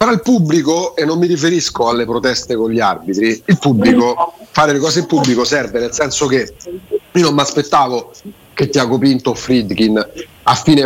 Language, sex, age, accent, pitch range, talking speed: Italian, male, 40-59, native, 140-185 Hz, 190 wpm